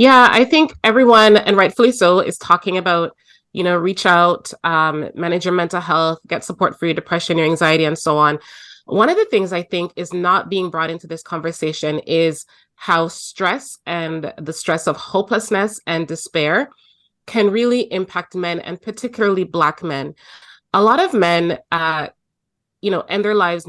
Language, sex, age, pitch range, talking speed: English, female, 30-49, 165-210 Hz, 175 wpm